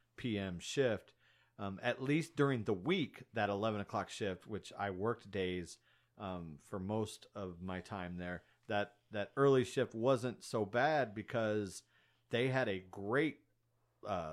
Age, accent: 40-59, American